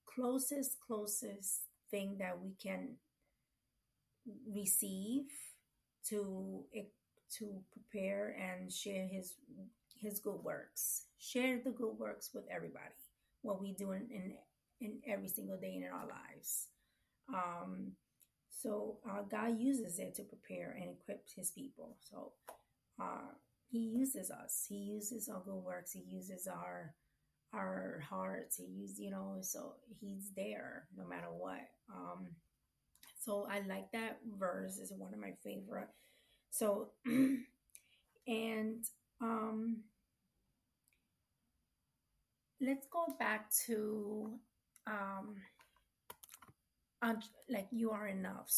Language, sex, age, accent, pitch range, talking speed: English, female, 30-49, American, 195-245 Hz, 115 wpm